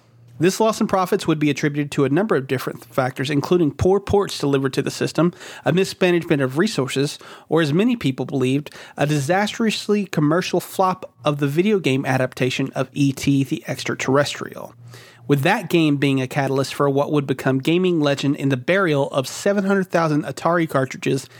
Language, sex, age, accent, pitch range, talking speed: English, male, 30-49, American, 135-170 Hz, 170 wpm